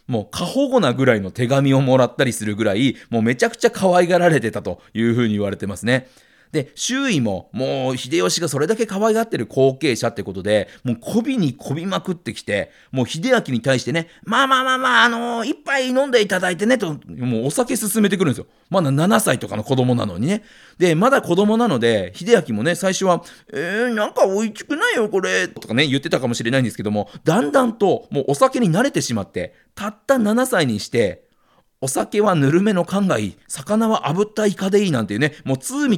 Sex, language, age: male, Japanese, 40-59